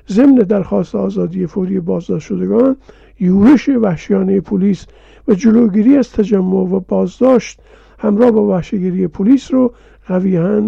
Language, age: Persian, 50-69